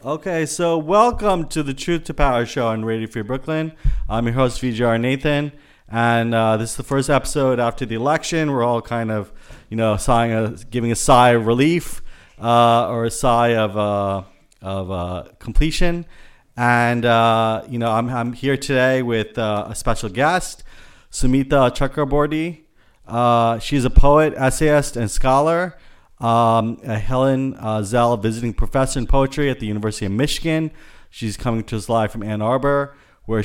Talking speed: 170 wpm